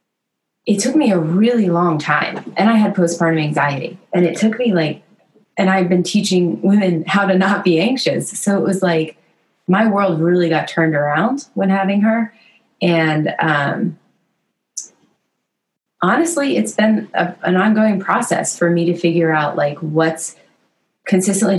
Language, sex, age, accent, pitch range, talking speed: English, female, 30-49, American, 155-190 Hz, 155 wpm